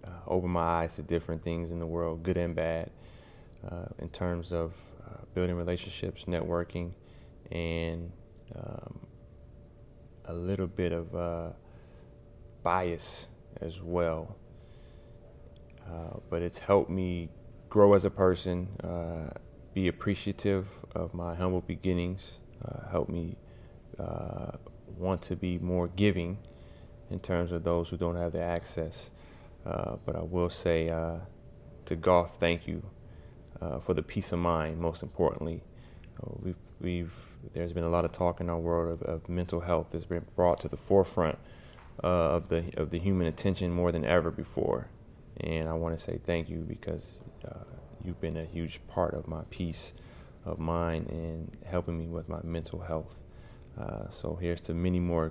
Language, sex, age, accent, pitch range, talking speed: English, male, 20-39, American, 85-90 Hz, 160 wpm